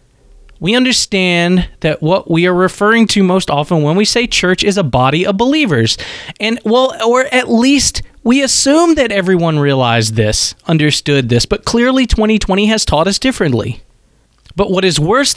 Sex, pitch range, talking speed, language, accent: male, 140-200 Hz, 170 wpm, English, American